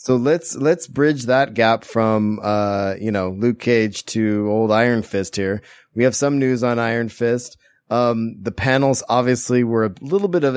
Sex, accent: male, American